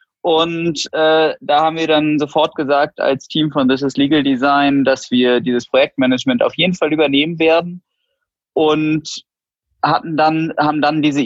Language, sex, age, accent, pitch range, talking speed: German, male, 20-39, German, 130-175 Hz, 160 wpm